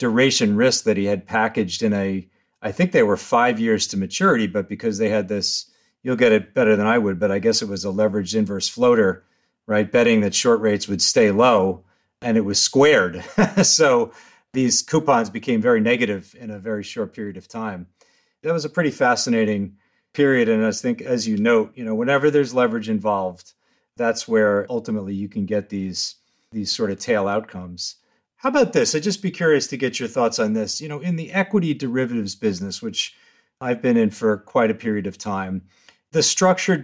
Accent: American